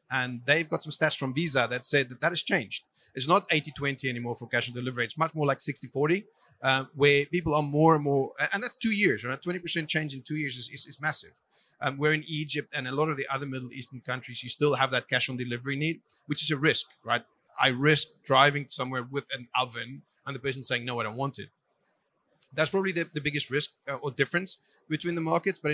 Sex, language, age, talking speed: male, English, 30-49, 235 wpm